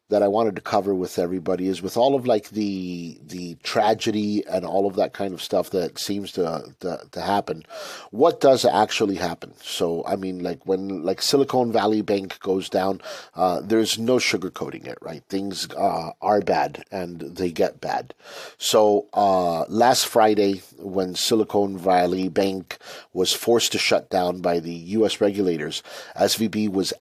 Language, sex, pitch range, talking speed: English, male, 95-115 Hz, 170 wpm